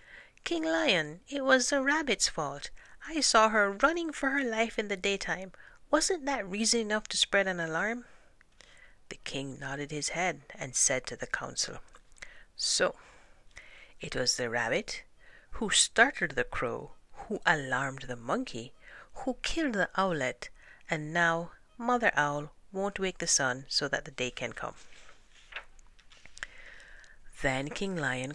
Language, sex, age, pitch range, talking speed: English, female, 60-79, 140-235 Hz, 145 wpm